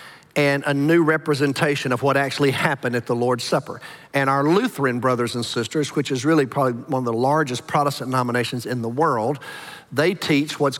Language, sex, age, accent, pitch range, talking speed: English, male, 50-69, American, 125-155 Hz, 190 wpm